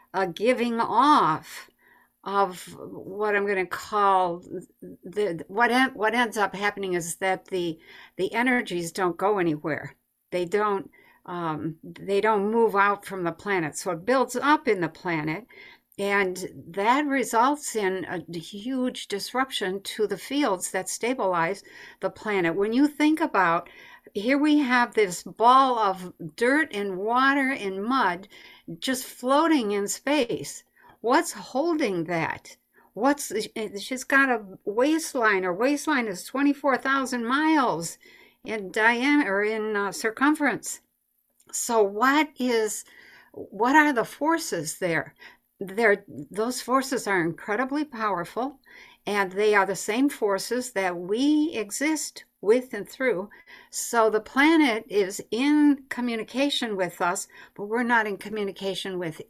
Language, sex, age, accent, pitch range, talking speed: English, female, 60-79, American, 190-265 Hz, 135 wpm